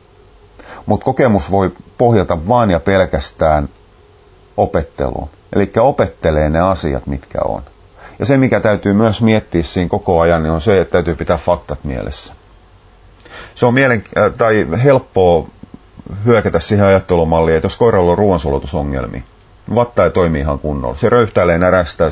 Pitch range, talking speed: 80-100 Hz, 145 wpm